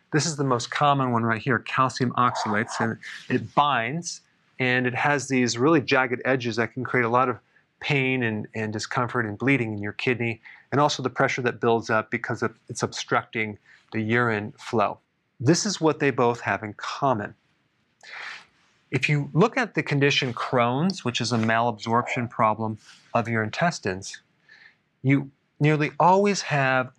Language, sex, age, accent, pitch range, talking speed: English, male, 40-59, American, 115-145 Hz, 170 wpm